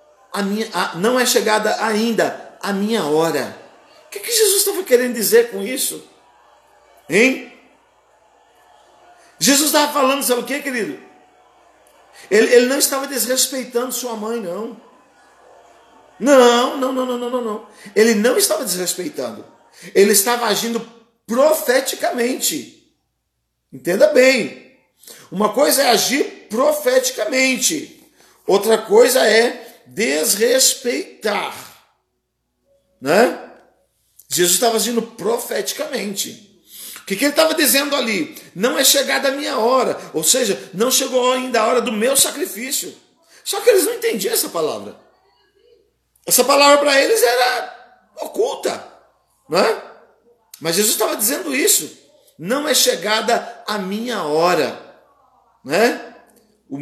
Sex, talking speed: male, 120 wpm